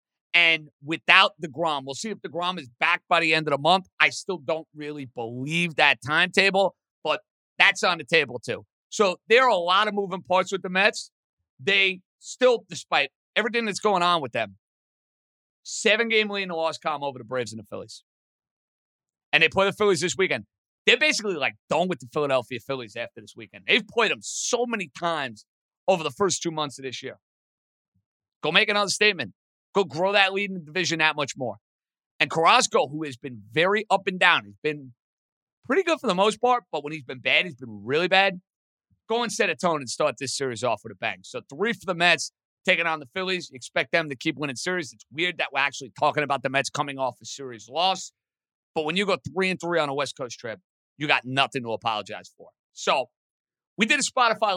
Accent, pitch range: American, 135-195 Hz